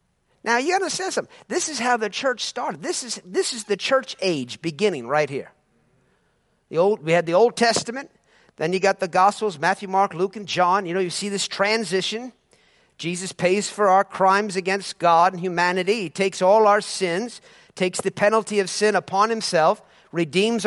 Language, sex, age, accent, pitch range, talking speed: English, male, 50-69, American, 185-230 Hz, 185 wpm